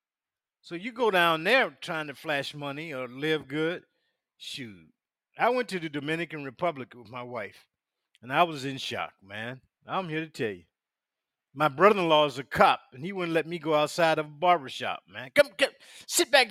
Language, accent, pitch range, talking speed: English, American, 155-215 Hz, 195 wpm